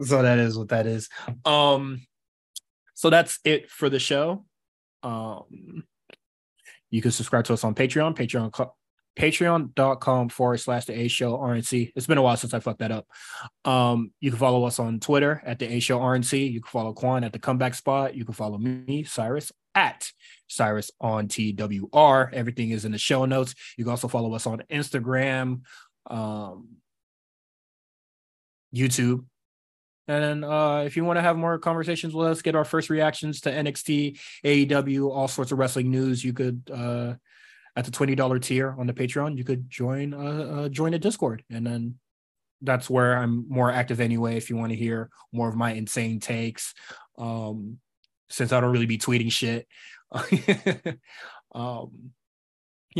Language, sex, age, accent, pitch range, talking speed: English, male, 20-39, American, 115-145 Hz, 165 wpm